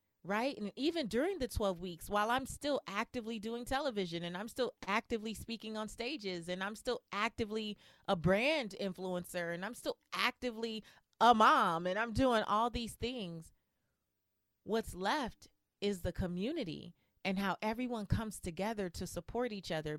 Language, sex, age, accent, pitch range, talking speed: English, female, 30-49, American, 180-235 Hz, 160 wpm